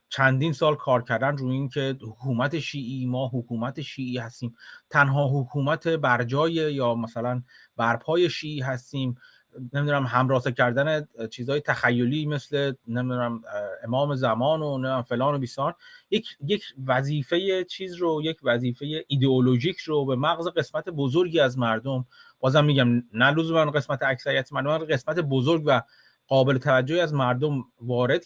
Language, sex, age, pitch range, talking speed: Persian, male, 30-49, 125-160 Hz, 135 wpm